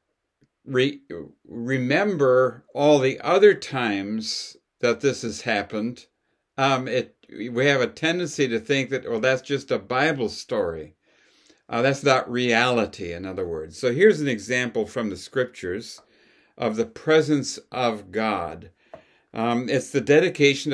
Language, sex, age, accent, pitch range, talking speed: English, male, 60-79, American, 115-145 Hz, 135 wpm